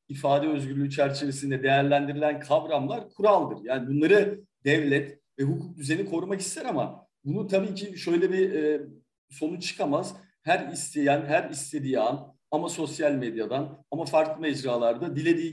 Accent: native